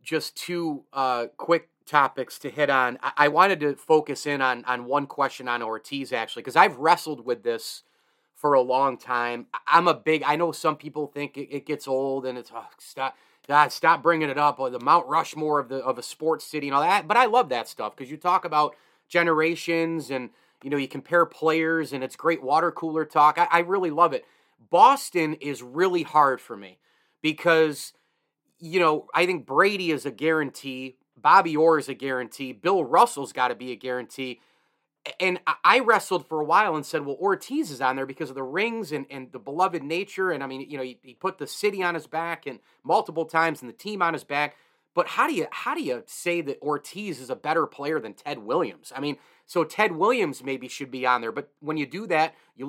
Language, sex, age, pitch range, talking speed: English, male, 30-49, 135-170 Hz, 220 wpm